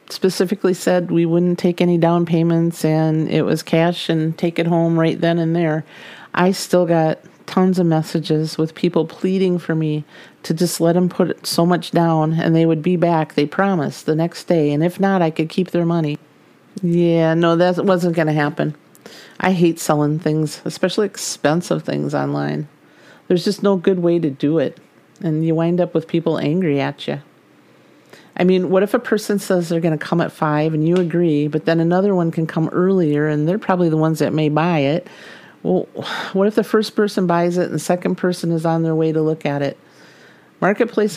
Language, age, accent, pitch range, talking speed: English, 50-69, American, 155-180 Hz, 205 wpm